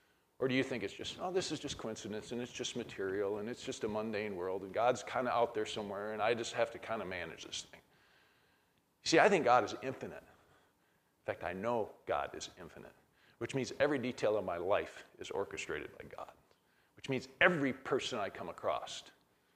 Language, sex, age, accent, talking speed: English, male, 40-59, American, 210 wpm